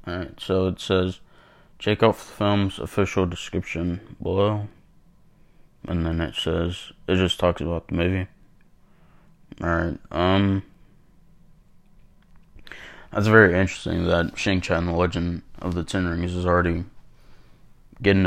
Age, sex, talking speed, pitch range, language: 20-39, male, 125 wpm, 85-100 Hz, English